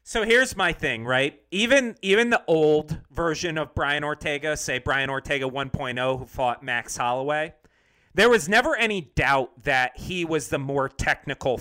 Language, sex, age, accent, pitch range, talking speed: English, male, 40-59, American, 130-175 Hz, 165 wpm